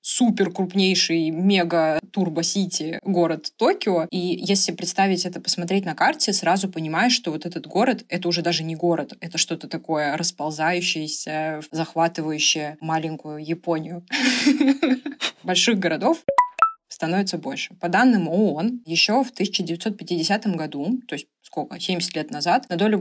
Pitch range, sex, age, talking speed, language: 165-200 Hz, female, 20-39, 135 wpm, Russian